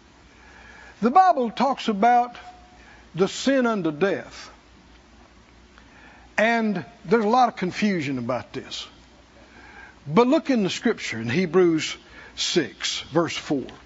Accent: American